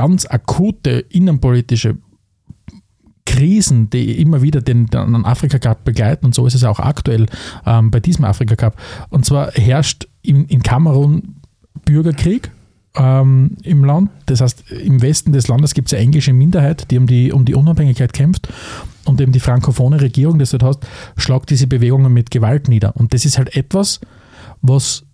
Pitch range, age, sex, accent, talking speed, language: 115-145 Hz, 40-59, male, Austrian, 165 wpm, German